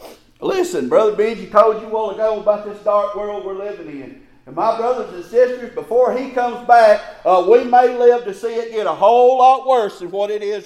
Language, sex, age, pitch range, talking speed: English, male, 40-59, 240-300 Hz, 220 wpm